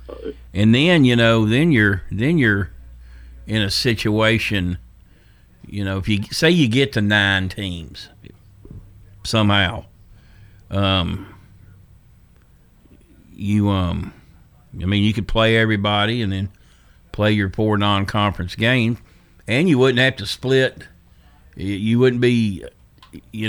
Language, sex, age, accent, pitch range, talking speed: English, male, 50-69, American, 95-115 Hz, 125 wpm